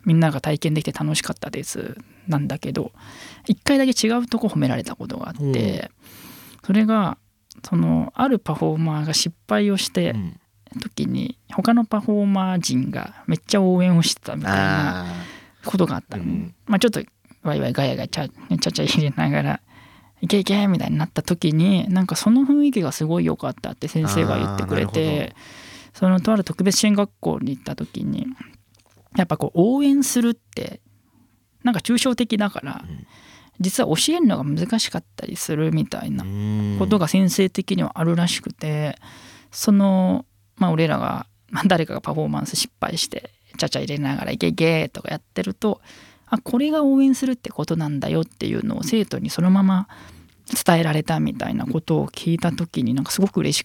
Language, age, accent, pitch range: Japanese, 20-39, native, 150-215 Hz